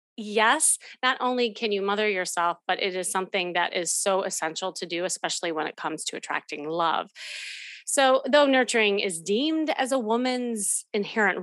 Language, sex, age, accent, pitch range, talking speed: English, female, 30-49, American, 190-250 Hz, 175 wpm